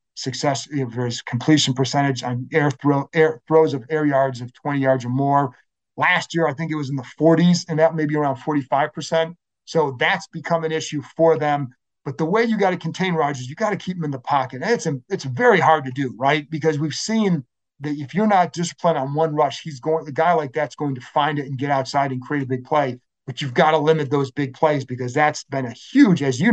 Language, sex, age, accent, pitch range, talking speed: English, male, 40-59, American, 135-160 Hz, 245 wpm